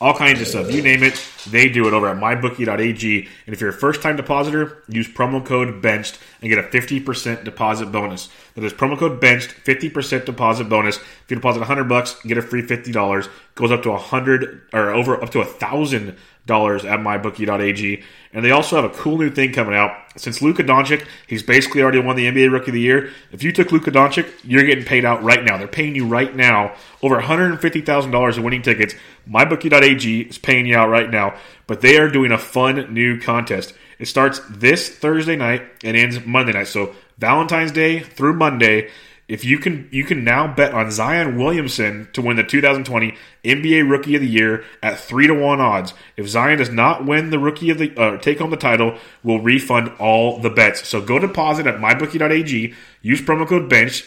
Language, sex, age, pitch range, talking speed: English, male, 30-49, 115-145 Hz, 205 wpm